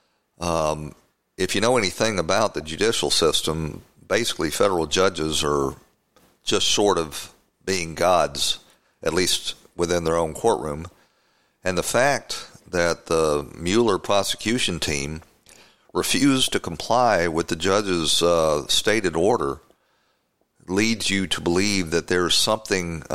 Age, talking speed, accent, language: 50-69, 125 wpm, American, English